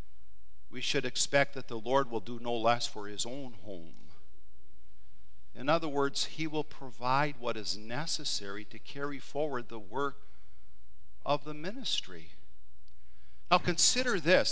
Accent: American